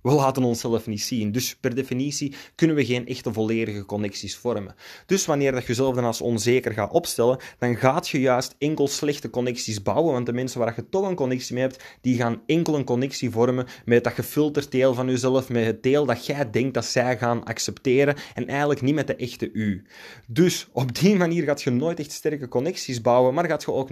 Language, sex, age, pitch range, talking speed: Dutch, male, 20-39, 115-140 Hz, 215 wpm